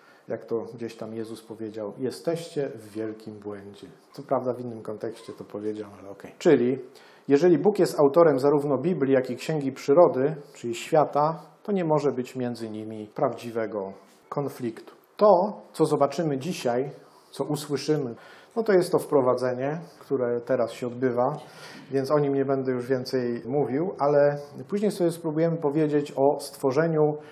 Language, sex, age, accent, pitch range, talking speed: Polish, male, 40-59, native, 125-155 Hz, 155 wpm